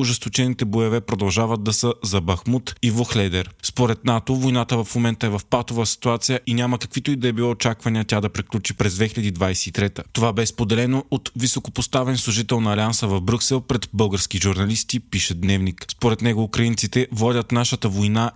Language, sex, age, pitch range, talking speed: Bulgarian, male, 20-39, 105-125 Hz, 175 wpm